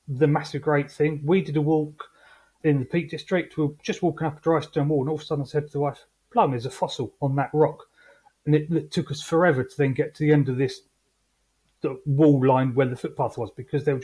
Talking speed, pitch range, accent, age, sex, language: 260 wpm, 125-150 Hz, British, 30-49, male, English